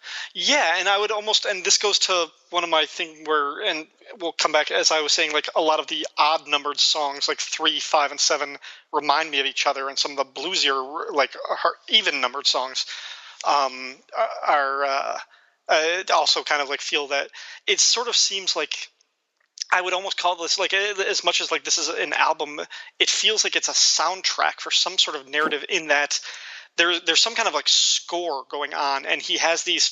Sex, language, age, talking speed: male, English, 30-49, 205 wpm